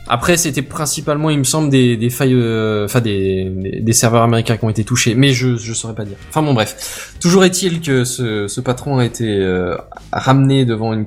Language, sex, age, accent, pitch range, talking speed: French, male, 20-39, French, 105-140 Hz, 215 wpm